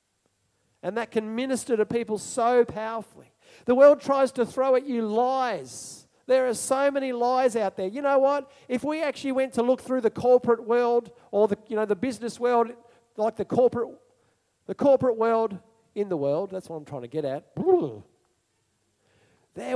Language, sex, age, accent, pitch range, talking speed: English, male, 40-59, Australian, 195-245 Hz, 180 wpm